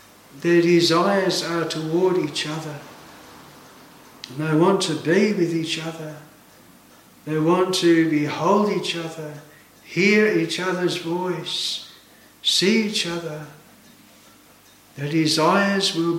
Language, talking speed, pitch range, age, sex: English, 110 wpm, 160-190 Hz, 60-79, male